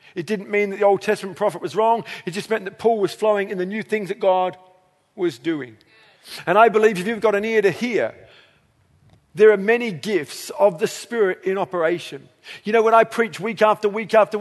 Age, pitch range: 40-59, 200-235 Hz